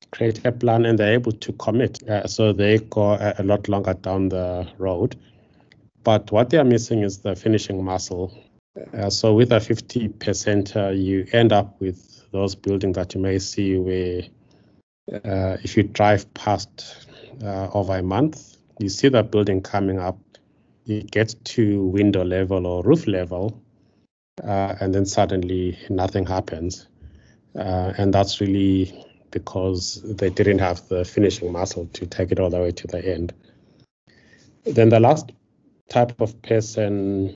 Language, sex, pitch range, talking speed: English, male, 95-110 Hz, 160 wpm